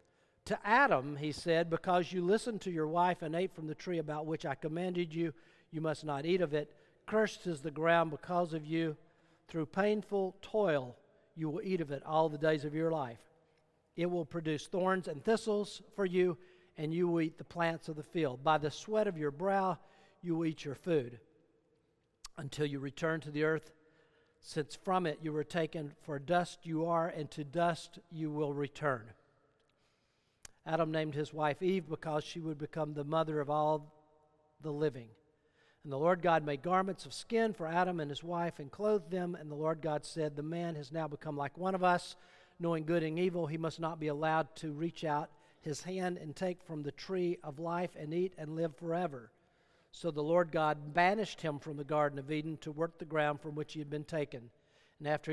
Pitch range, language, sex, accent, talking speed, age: 150-175 Hz, English, male, American, 205 wpm, 50-69